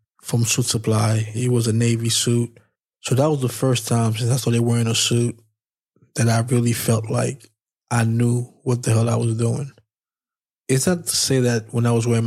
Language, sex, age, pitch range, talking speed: English, male, 20-39, 115-125 Hz, 205 wpm